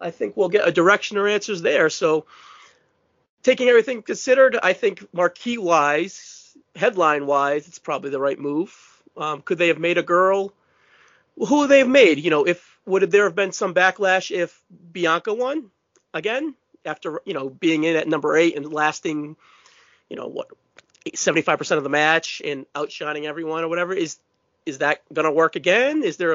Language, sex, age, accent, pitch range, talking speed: English, male, 30-49, American, 155-220 Hz, 180 wpm